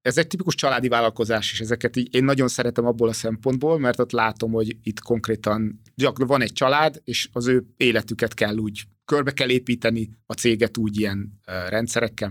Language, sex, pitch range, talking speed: Hungarian, male, 110-130 Hz, 185 wpm